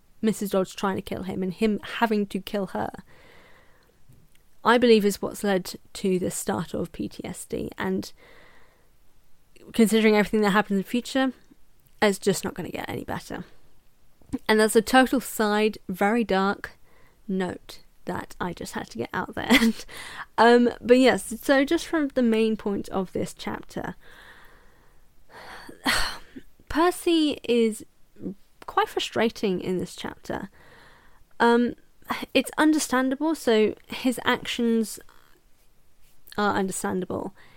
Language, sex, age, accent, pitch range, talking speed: English, female, 10-29, British, 200-245 Hz, 130 wpm